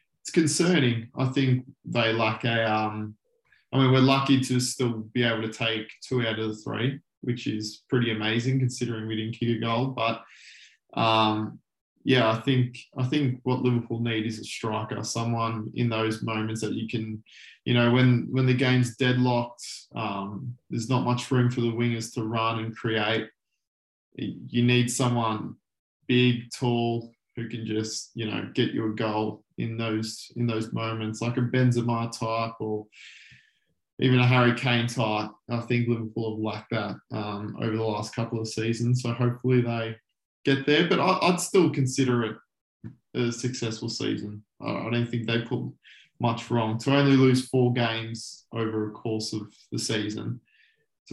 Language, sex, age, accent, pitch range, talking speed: English, male, 20-39, Australian, 110-125 Hz, 175 wpm